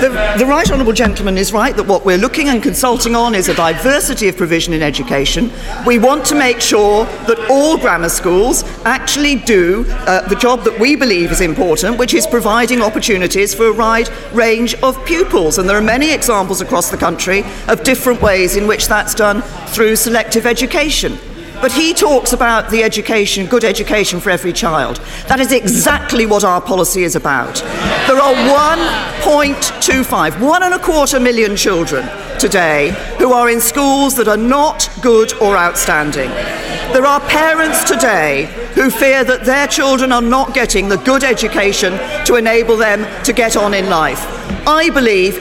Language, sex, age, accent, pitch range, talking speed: English, female, 40-59, British, 210-280 Hz, 175 wpm